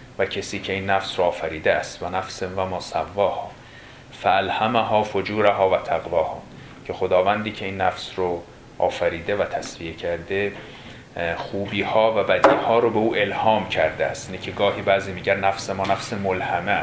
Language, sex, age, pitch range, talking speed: Persian, male, 30-49, 100-120 Hz, 170 wpm